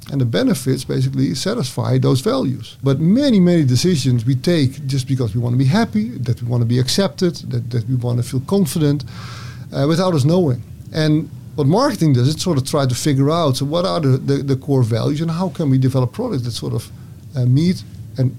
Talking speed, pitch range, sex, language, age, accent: 220 wpm, 120-150 Hz, male, English, 50-69, Dutch